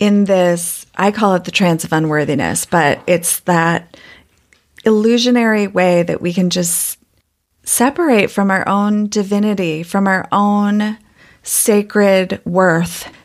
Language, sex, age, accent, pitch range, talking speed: English, female, 30-49, American, 180-205 Hz, 125 wpm